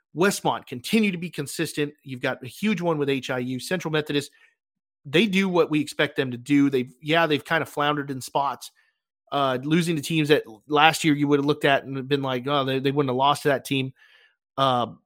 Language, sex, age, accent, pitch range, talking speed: English, male, 30-49, American, 125-155 Hz, 220 wpm